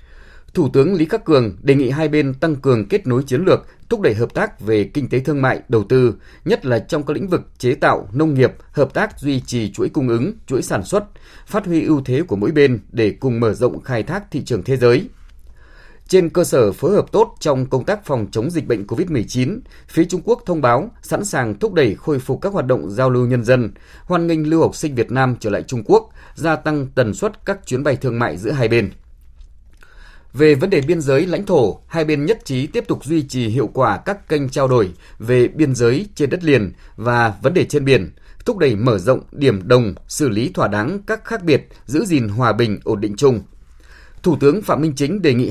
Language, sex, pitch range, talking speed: Vietnamese, male, 115-155 Hz, 235 wpm